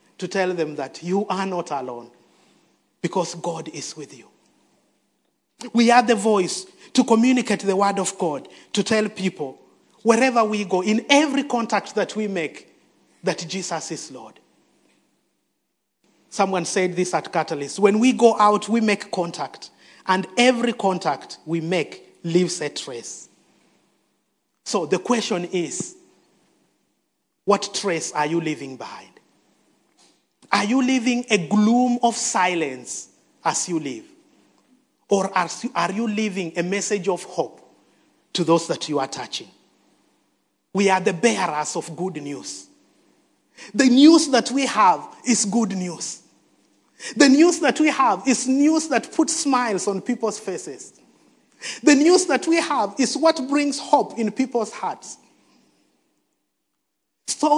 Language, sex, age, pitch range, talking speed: English, male, 30-49, 175-250 Hz, 140 wpm